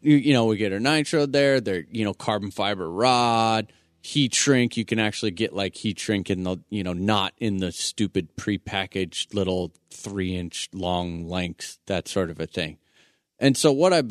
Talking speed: 190 wpm